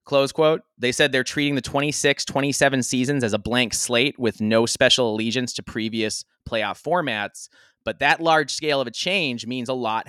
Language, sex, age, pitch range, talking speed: English, male, 20-39, 115-150 Hz, 190 wpm